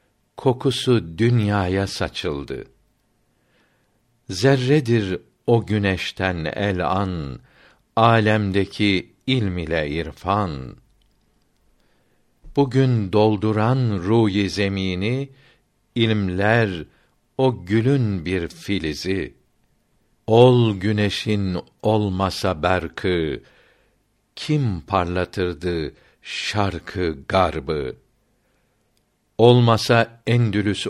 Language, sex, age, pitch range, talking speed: Turkish, male, 60-79, 90-115 Hz, 60 wpm